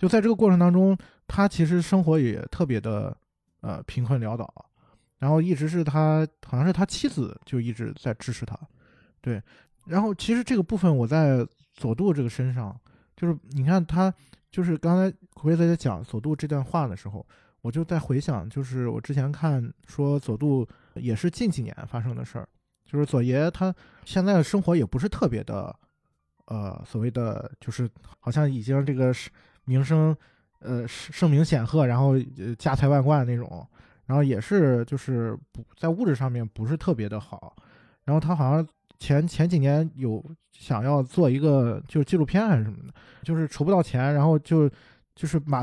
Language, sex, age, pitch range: Chinese, male, 20-39, 125-165 Hz